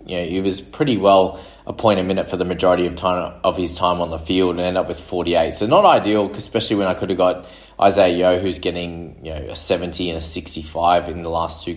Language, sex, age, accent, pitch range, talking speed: English, male, 20-39, Australian, 85-100 Hz, 260 wpm